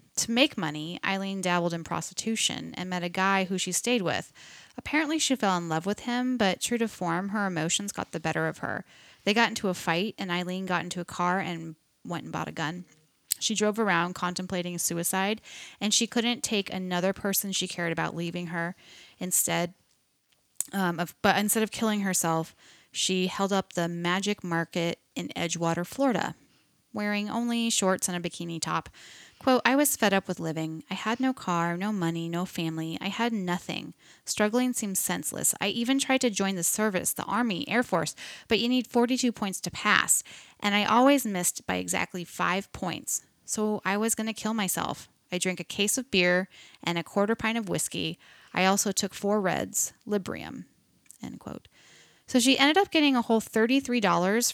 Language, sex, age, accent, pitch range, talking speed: English, female, 10-29, American, 175-220 Hz, 190 wpm